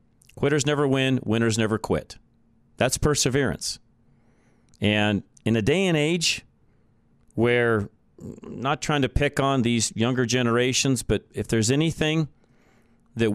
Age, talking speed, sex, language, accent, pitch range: 40-59, 125 wpm, male, English, American, 115-145 Hz